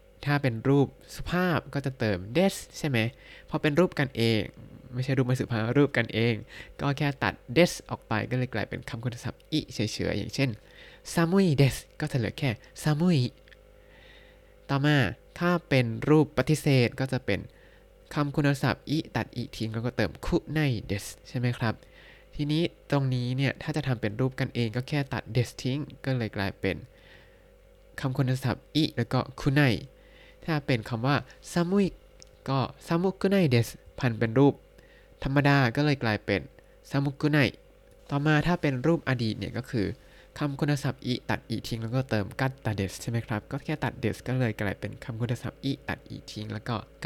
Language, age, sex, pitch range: Thai, 20-39, male, 115-150 Hz